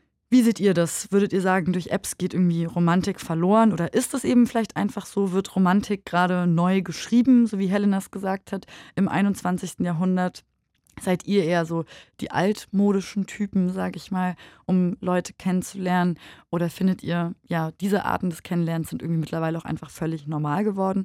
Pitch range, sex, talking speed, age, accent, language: 170-205 Hz, female, 180 wpm, 20-39, German, German